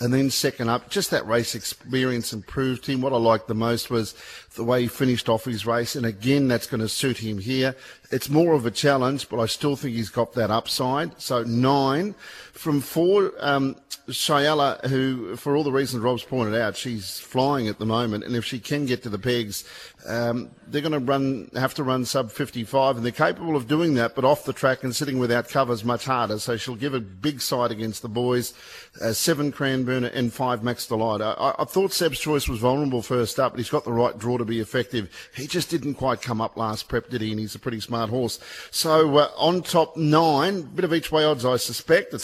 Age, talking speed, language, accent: 50-69, 225 wpm, English, Australian